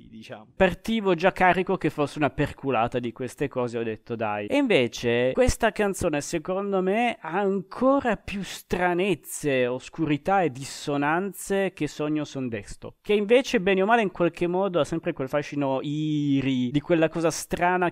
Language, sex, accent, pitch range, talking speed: Italian, male, native, 125-170 Hz, 160 wpm